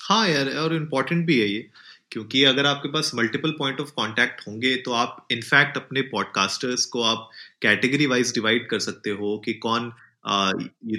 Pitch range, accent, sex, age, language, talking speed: 110-140 Hz, native, male, 30-49, Hindi, 175 wpm